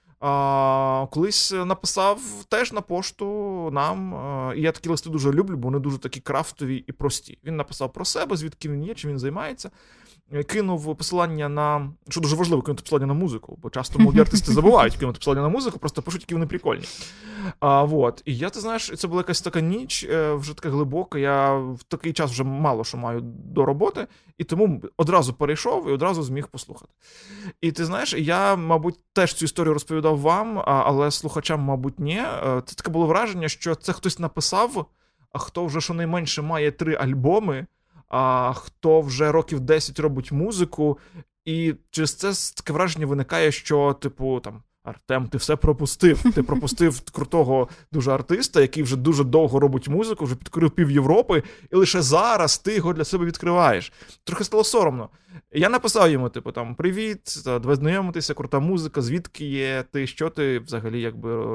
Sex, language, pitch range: male, Ukrainian, 140-175 Hz